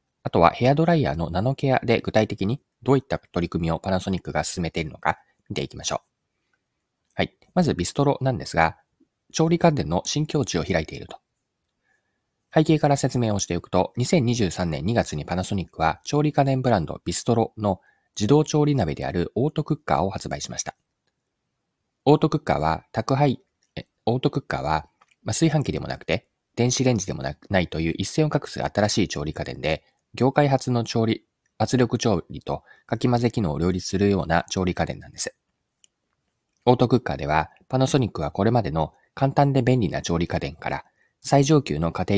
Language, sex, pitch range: Japanese, male, 85-140 Hz